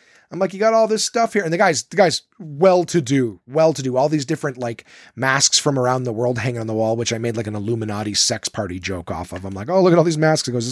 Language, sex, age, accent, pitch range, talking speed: English, male, 30-49, American, 115-155 Hz, 310 wpm